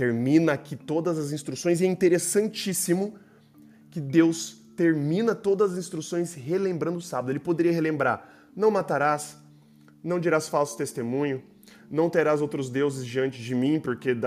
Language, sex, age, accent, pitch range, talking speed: Portuguese, male, 20-39, Brazilian, 110-150 Hz, 145 wpm